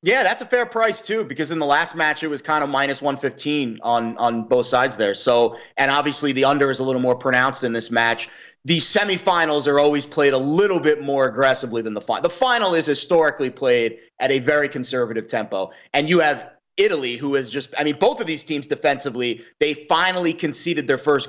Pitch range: 130-165 Hz